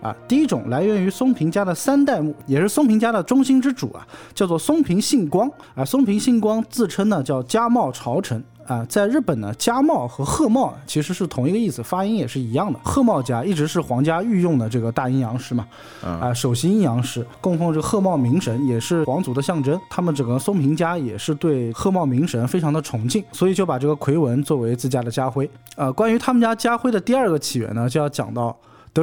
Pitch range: 130-210 Hz